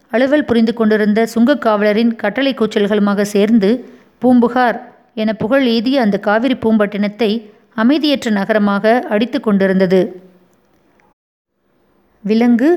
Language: Tamil